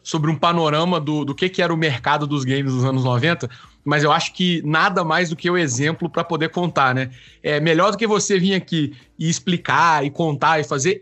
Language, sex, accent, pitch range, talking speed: Portuguese, male, Brazilian, 150-185 Hz, 230 wpm